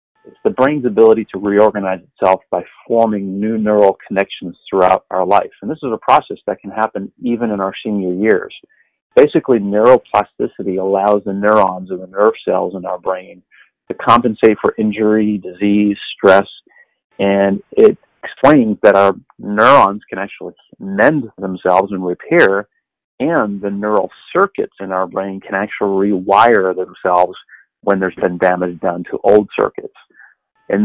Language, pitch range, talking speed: English, 95-110 Hz, 150 wpm